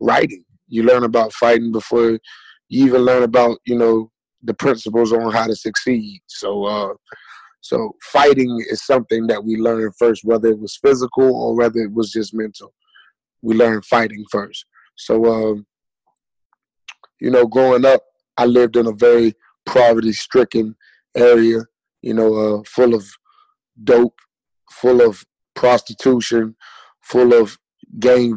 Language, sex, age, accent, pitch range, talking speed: English, male, 20-39, American, 110-120 Hz, 145 wpm